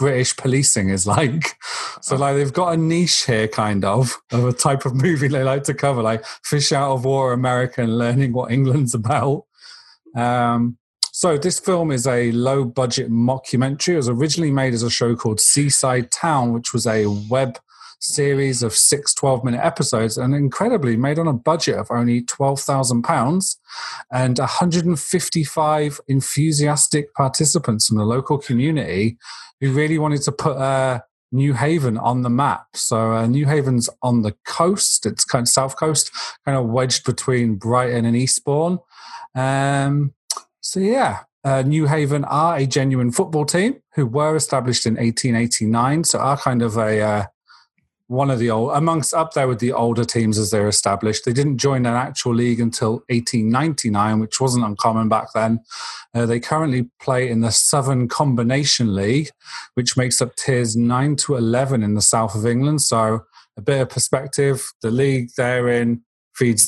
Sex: male